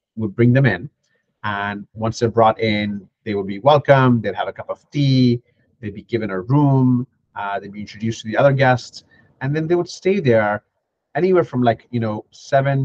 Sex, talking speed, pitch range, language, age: male, 205 wpm, 110-135 Hz, English, 30-49